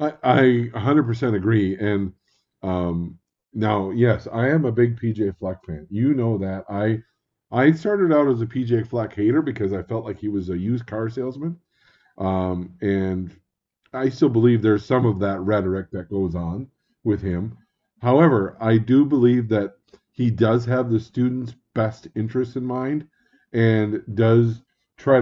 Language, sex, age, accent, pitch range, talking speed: English, male, 40-59, American, 100-130 Hz, 165 wpm